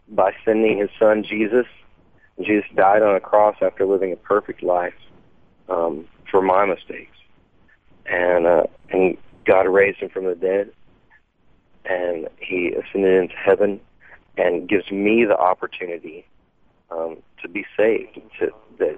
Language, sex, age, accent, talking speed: English, male, 40-59, American, 135 wpm